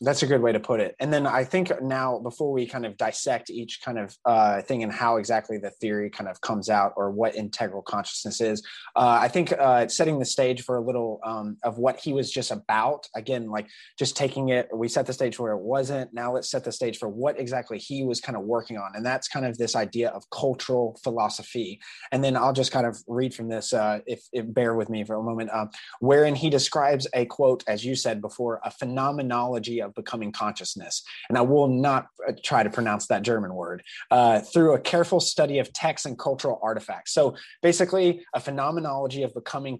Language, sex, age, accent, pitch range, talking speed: English, male, 20-39, American, 115-140 Hz, 220 wpm